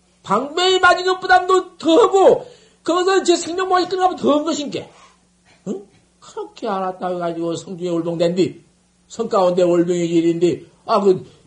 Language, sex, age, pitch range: Korean, male, 50-69, 180-300 Hz